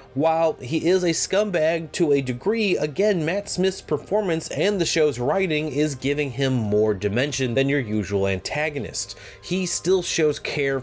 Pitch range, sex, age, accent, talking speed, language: 110-145 Hz, male, 30-49, American, 160 wpm, English